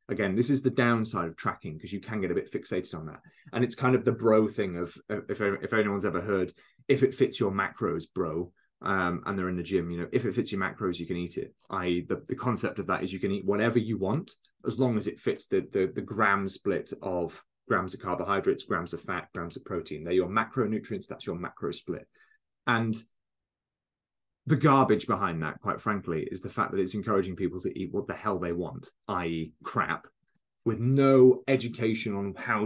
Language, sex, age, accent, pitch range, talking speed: English, male, 20-39, British, 90-125 Hz, 220 wpm